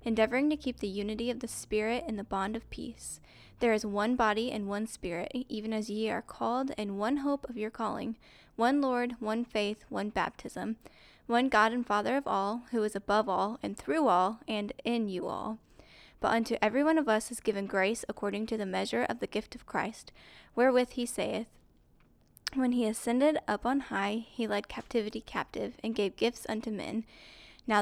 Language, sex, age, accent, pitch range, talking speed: English, female, 10-29, American, 210-245 Hz, 195 wpm